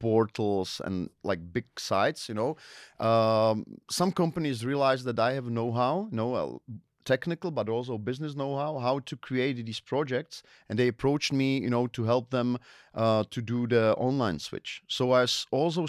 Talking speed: 175 wpm